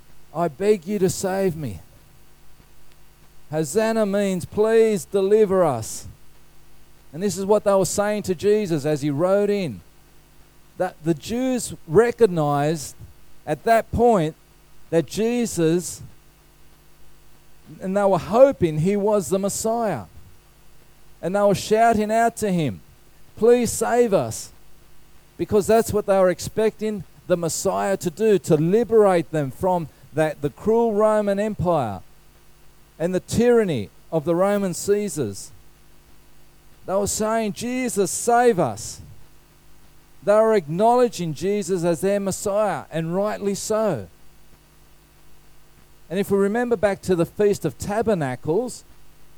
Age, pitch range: 40-59, 160-215 Hz